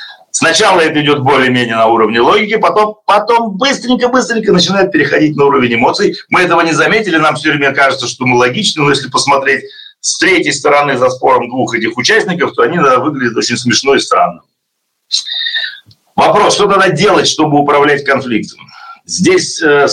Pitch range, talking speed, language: 130-195 Hz, 160 wpm, Russian